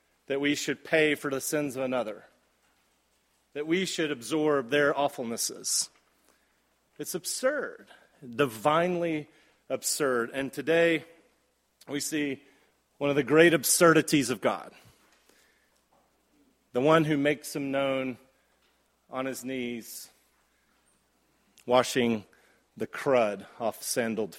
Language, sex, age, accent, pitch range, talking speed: English, male, 40-59, American, 125-150 Hz, 110 wpm